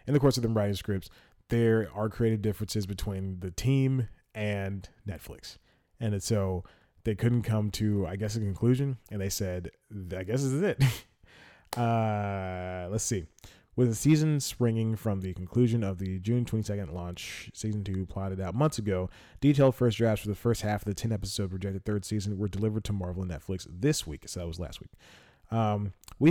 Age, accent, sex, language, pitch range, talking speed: 30-49, American, male, English, 95-115 Hz, 190 wpm